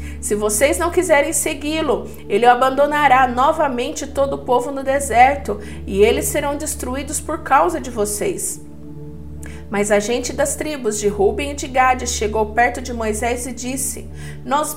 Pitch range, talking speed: 205-270 Hz, 155 wpm